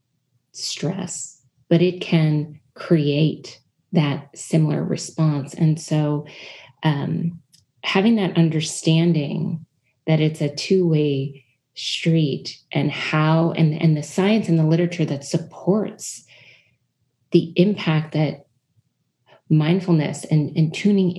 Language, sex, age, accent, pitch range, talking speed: English, female, 30-49, American, 150-175 Hz, 105 wpm